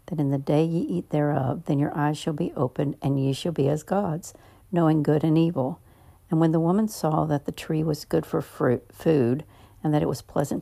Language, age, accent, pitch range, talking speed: English, 60-79, American, 140-165 Hz, 230 wpm